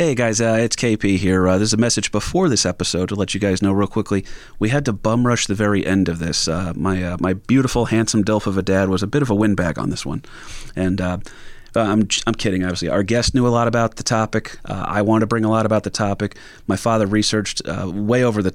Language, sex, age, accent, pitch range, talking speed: English, male, 30-49, American, 95-110 Hz, 260 wpm